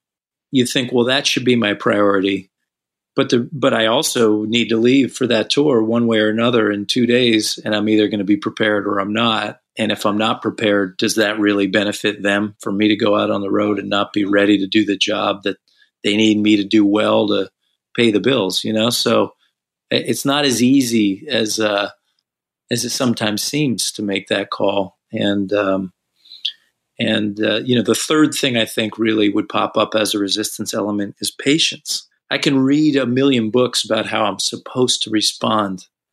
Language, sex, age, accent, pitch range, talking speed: English, male, 40-59, American, 105-120 Hz, 205 wpm